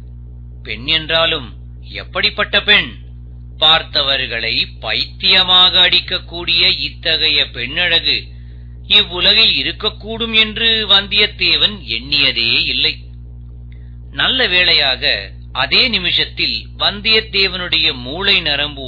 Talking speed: 65 wpm